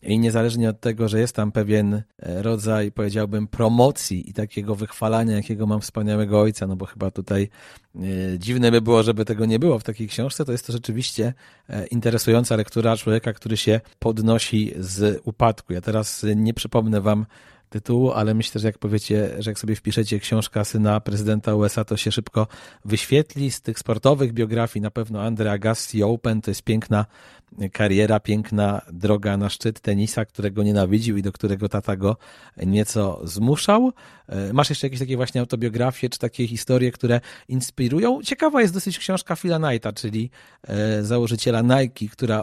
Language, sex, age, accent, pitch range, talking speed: Polish, male, 40-59, native, 105-120 Hz, 160 wpm